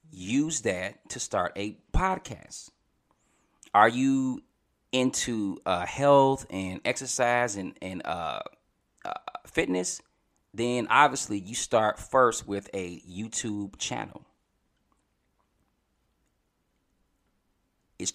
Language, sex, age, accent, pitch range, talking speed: English, male, 30-49, American, 100-130 Hz, 95 wpm